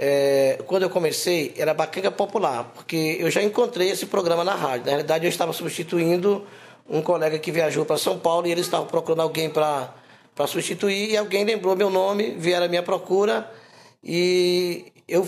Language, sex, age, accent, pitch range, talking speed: Portuguese, male, 20-39, Brazilian, 160-205 Hz, 175 wpm